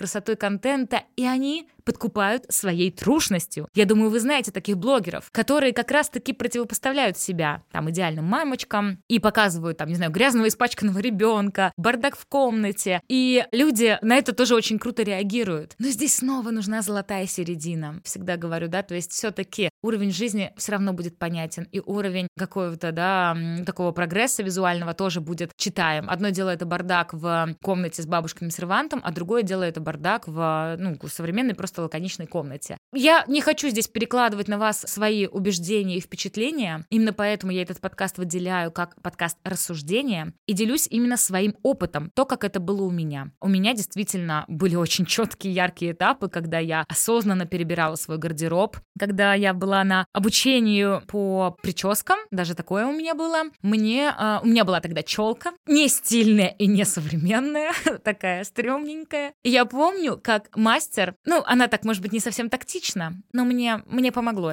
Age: 20-39